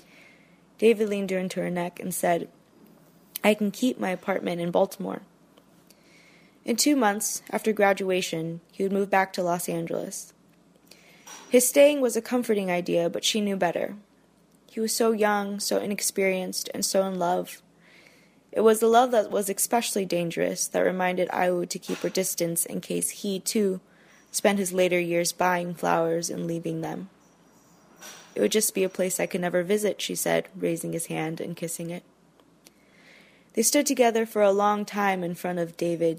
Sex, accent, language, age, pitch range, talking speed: female, American, English, 20-39, 170-205 Hz, 170 wpm